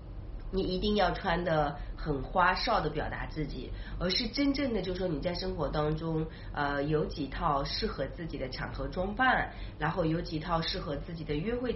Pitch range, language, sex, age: 150-210 Hz, Chinese, female, 30-49